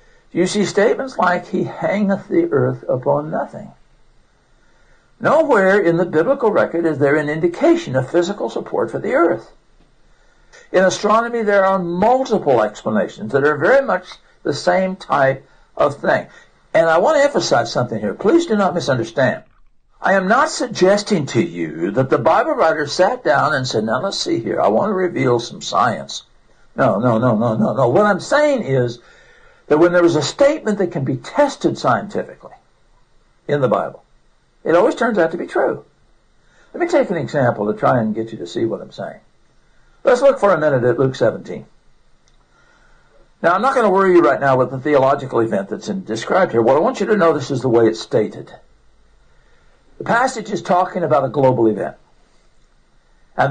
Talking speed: 185 wpm